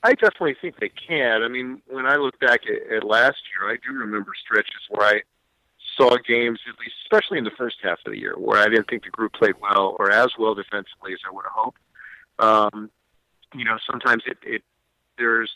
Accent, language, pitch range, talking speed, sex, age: American, English, 115-150 Hz, 220 wpm, male, 50-69